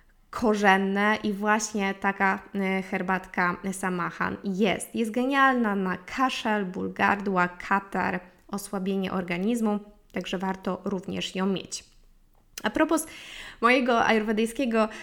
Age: 20-39